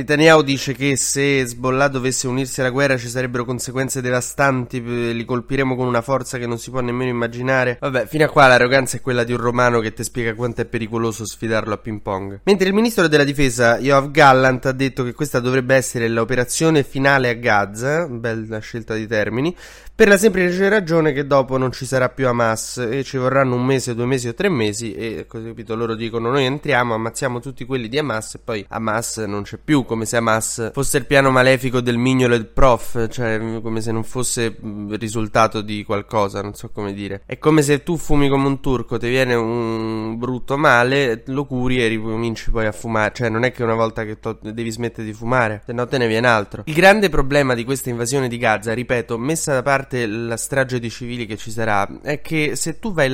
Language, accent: Italian, native